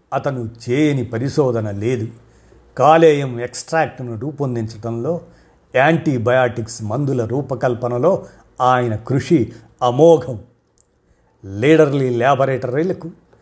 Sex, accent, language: male, native, Telugu